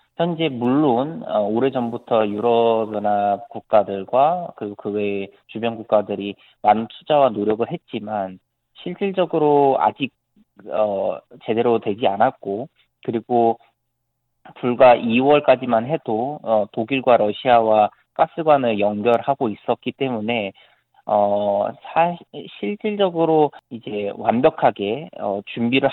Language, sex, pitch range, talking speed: English, male, 105-140 Hz, 75 wpm